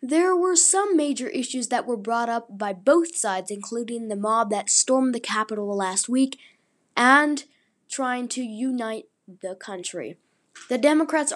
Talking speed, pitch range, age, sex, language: 155 wpm, 205-255 Hz, 10-29, female, English